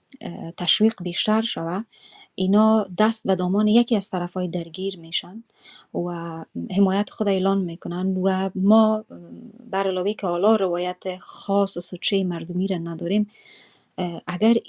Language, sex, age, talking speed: Persian, female, 30-49, 125 wpm